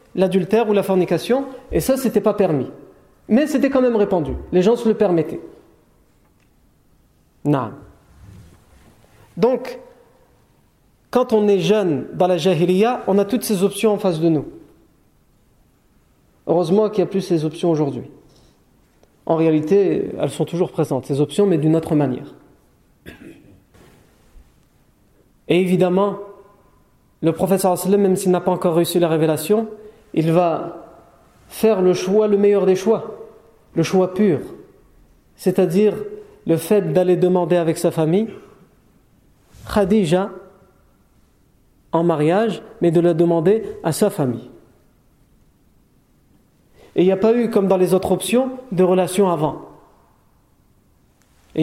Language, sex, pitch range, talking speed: French, male, 165-210 Hz, 130 wpm